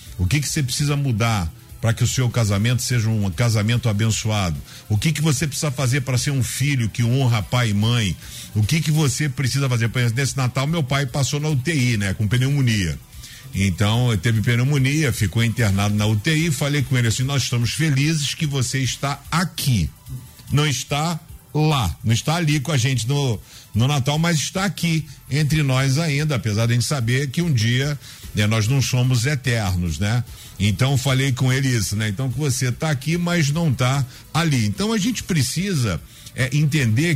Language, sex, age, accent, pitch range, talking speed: Portuguese, male, 50-69, Brazilian, 115-150 Hz, 190 wpm